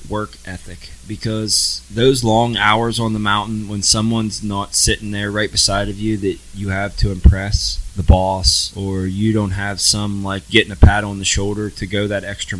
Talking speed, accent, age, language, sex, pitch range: 195 wpm, American, 20-39, English, male, 95-105 Hz